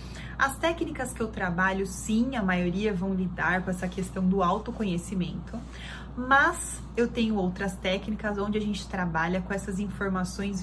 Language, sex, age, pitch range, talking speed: Portuguese, female, 30-49, 185-220 Hz, 155 wpm